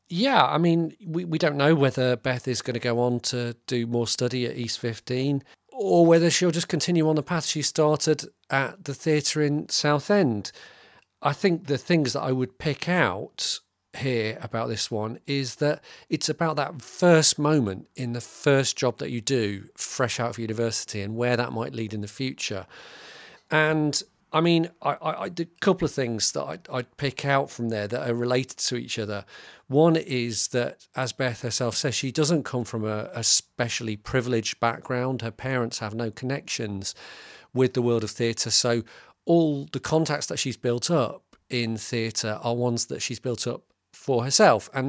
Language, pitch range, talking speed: English, 115-150 Hz, 195 wpm